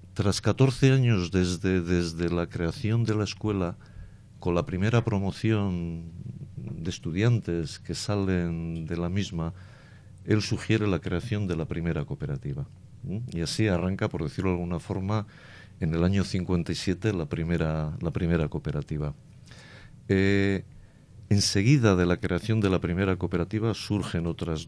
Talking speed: 135 wpm